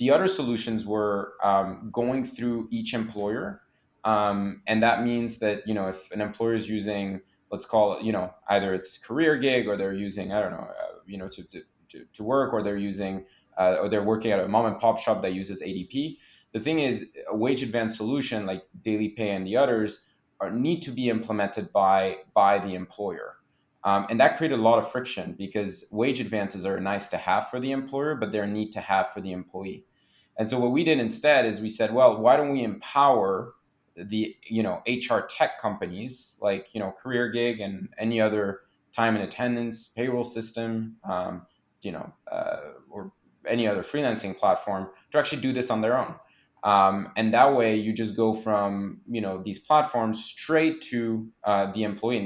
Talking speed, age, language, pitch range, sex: 200 wpm, 20-39, English, 100-120 Hz, male